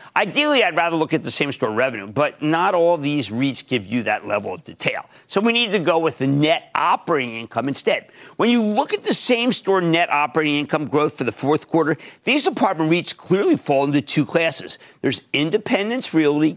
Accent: American